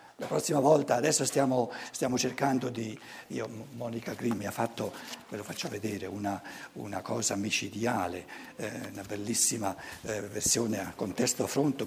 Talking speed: 155 wpm